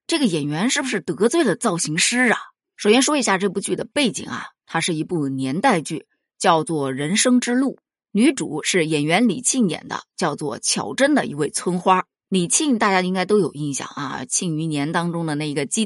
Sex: female